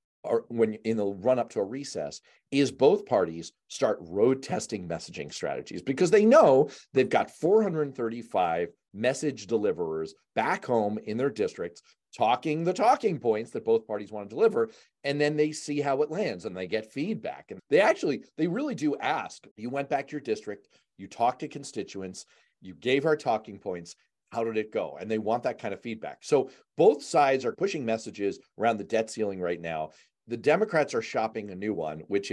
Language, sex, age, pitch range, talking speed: English, male, 40-59, 105-150 Hz, 195 wpm